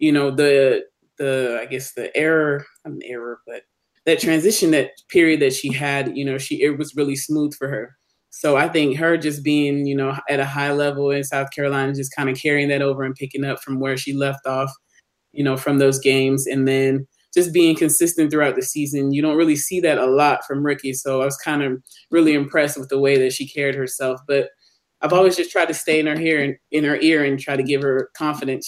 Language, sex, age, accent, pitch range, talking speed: English, male, 20-39, American, 135-150 Hz, 235 wpm